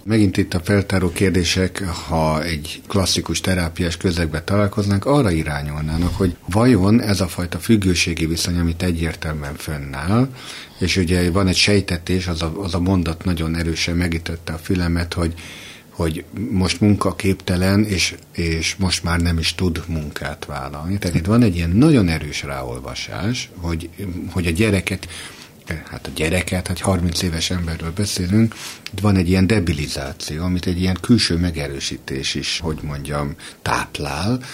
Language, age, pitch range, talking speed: Hungarian, 60-79, 80-95 Hz, 145 wpm